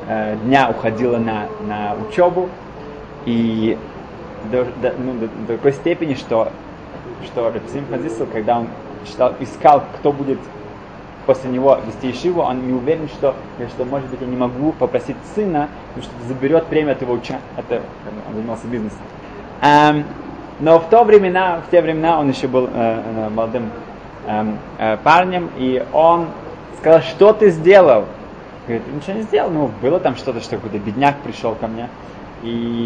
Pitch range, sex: 110-150 Hz, male